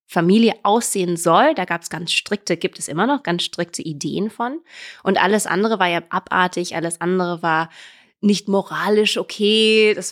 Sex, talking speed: female, 170 wpm